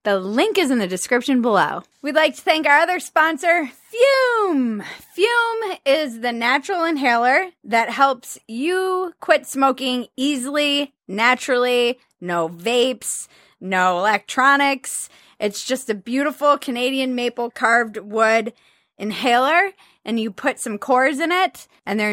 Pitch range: 205-275 Hz